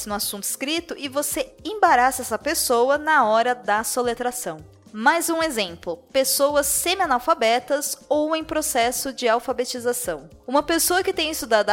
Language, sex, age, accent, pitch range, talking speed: Portuguese, female, 20-39, Brazilian, 215-285 Hz, 140 wpm